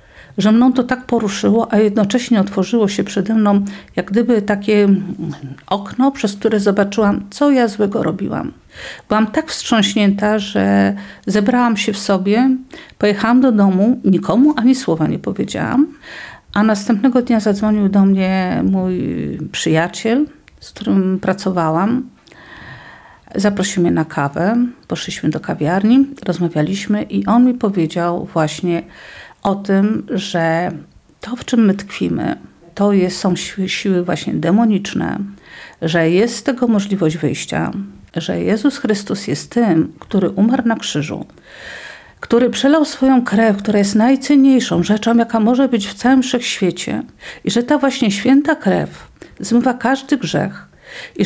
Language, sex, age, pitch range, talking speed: Polish, female, 50-69, 190-240 Hz, 135 wpm